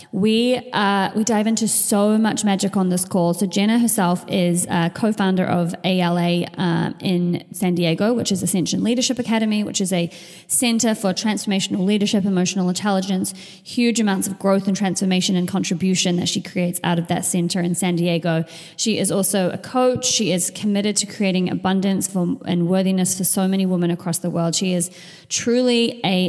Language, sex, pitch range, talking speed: English, female, 175-200 Hz, 185 wpm